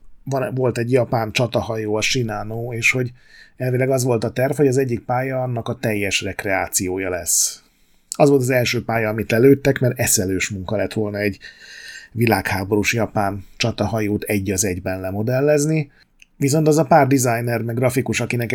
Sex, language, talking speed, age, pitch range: male, Hungarian, 160 wpm, 30-49, 105-130 Hz